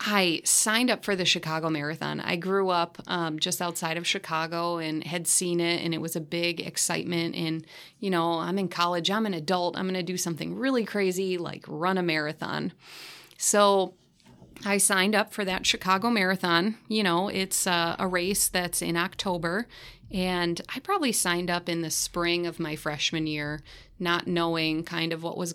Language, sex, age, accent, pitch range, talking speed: English, female, 30-49, American, 165-195 Hz, 190 wpm